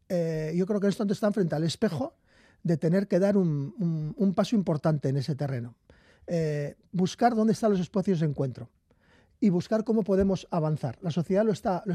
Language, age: Spanish, 40-59